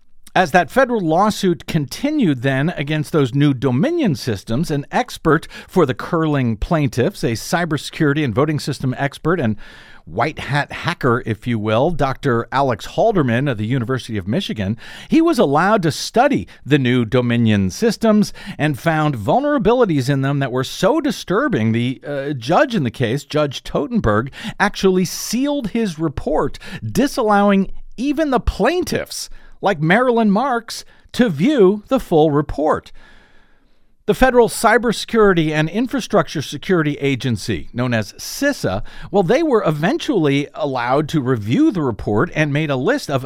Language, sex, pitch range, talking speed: English, male, 130-200 Hz, 145 wpm